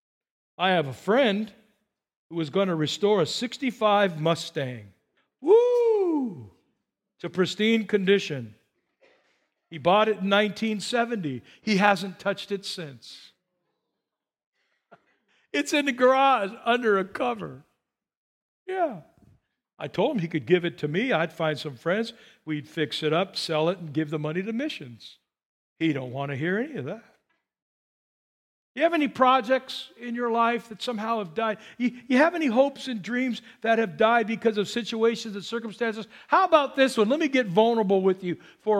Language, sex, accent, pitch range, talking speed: English, male, American, 175-235 Hz, 160 wpm